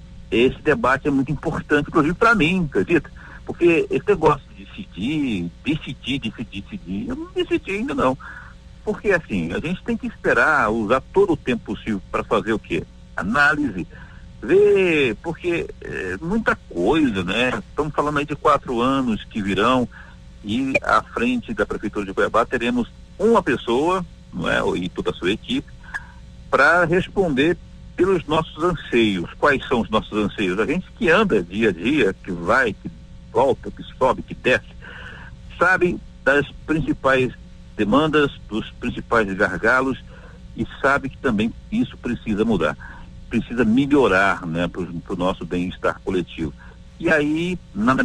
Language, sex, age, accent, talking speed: Portuguese, male, 60-79, Brazilian, 150 wpm